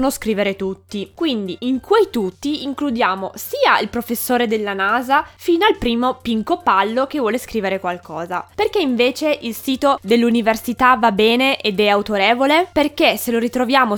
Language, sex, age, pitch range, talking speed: Italian, female, 20-39, 210-280 Hz, 150 wpm